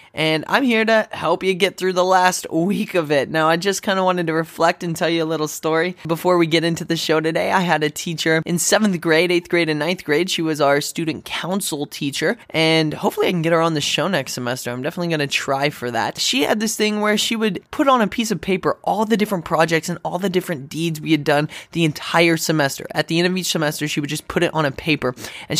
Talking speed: 265 wpm